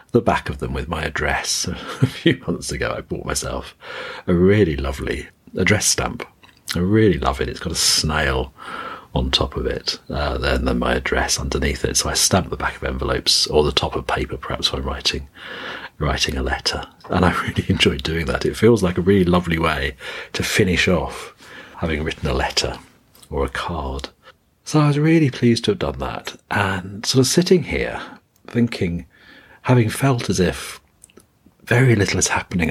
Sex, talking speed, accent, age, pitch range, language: male, 185 wpm, British, 40-59, 80-120 Hz, English